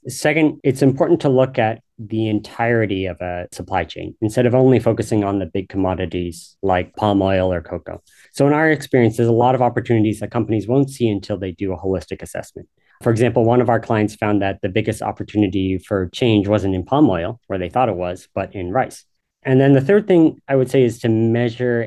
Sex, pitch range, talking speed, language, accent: male, 95-125 Hz, 220 wpm, English, American